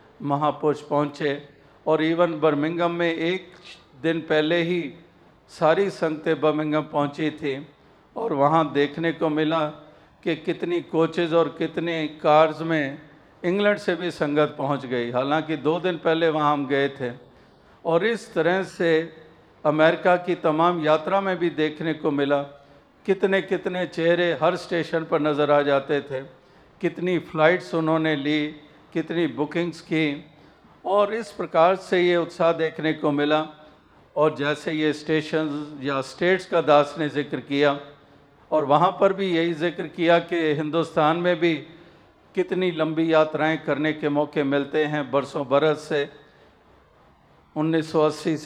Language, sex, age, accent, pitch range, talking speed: Hindi, male, 50-69, native, 150-170 Hz, 140 wpm